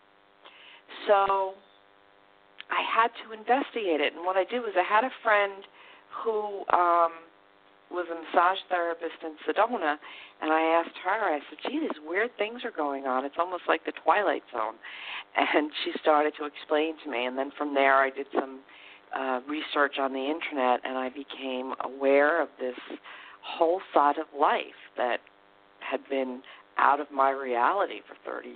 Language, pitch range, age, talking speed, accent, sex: English, 135-175 Hz, 50-69, 170 wpm, American, female